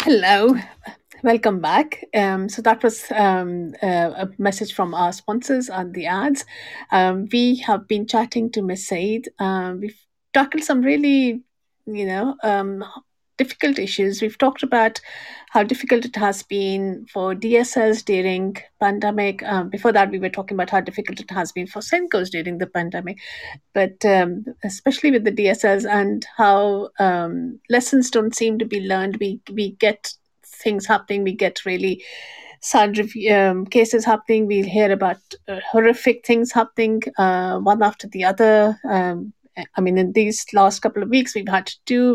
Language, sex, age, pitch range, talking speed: English, female, 50-69, 190-230 Hz, 165 wpm